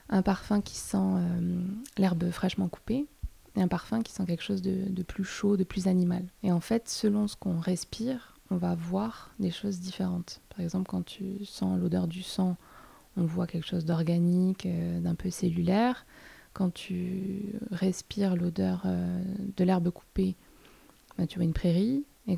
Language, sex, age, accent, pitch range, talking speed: French, female, 20-39, French, 175-200 Hz, 175 wpm